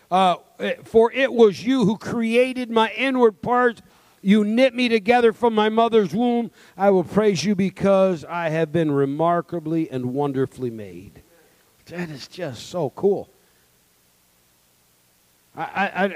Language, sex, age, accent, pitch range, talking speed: English, male, 50-69, American, 125-200 Hz, 135 wpm